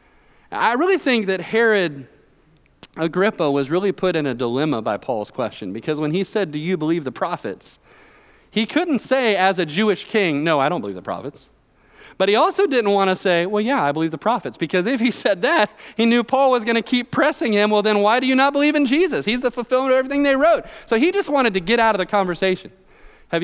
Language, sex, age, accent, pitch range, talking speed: English, male, 30-49, American, 155-235 Hz, 235 wpm